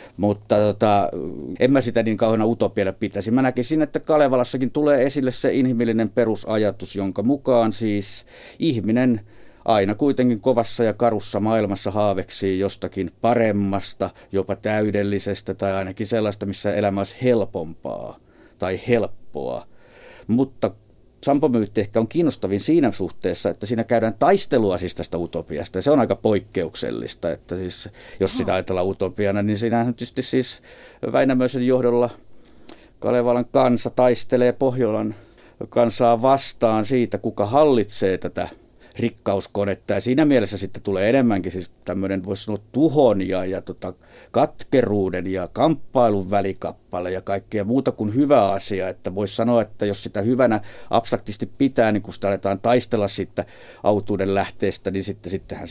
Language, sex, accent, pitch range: Finnish, male, native, 100-120 Hz